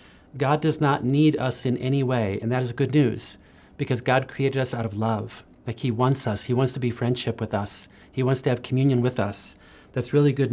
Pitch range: 115-145 Hz